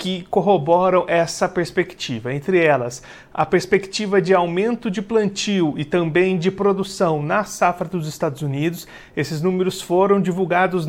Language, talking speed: Portuguese, 140 wpm